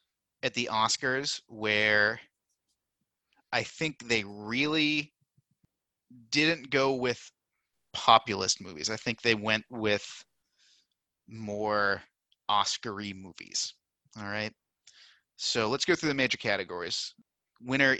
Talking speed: 105 wpm